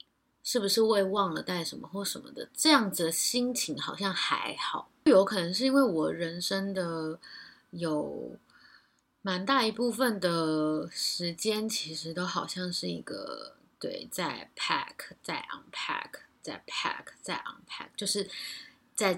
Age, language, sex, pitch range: 20-39, Chinese, female, 165-240 Hz